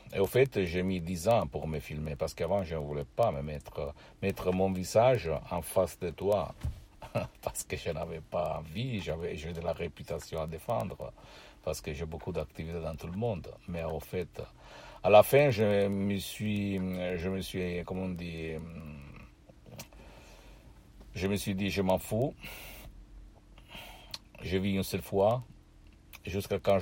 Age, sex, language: 60-79, male, Italian